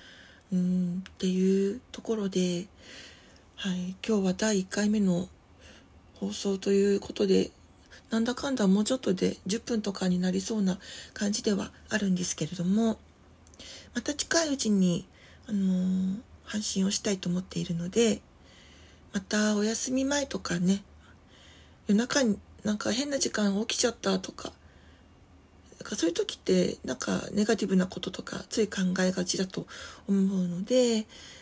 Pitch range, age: 175-210 Hz, 40-59